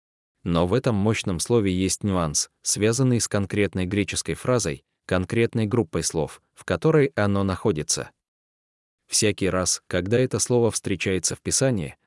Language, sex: Russian, male